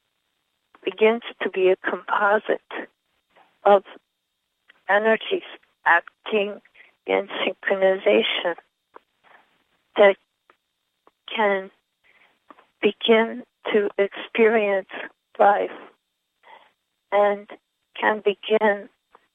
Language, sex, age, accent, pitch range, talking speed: English, female, 40-59, American, 200-225 Hz, 60 wpm